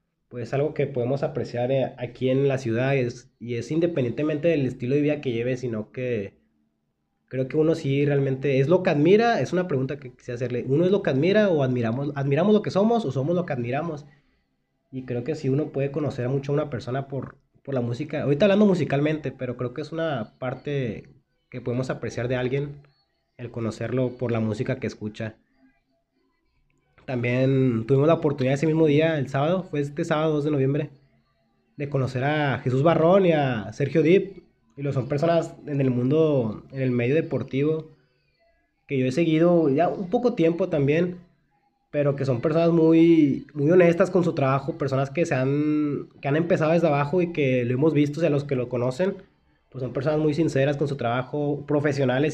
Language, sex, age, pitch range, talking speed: Spanish, male, 20-39, 130-160 Hz, 195 wpm